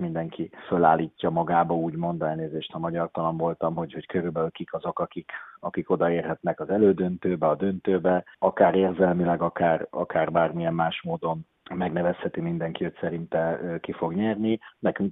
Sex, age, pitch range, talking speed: male, 30-49, 85-100 Hz, 135 wpm